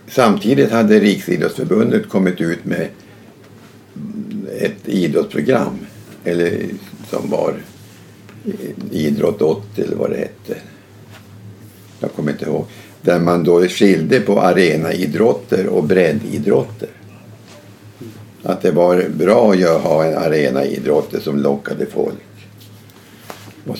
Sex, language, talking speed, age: male, Swedish, 100 wpm, 60-79